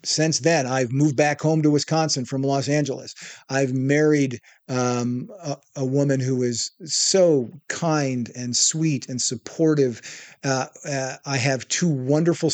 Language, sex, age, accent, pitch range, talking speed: English, male, 50-69, American, 135-160 Hz, 150 wpm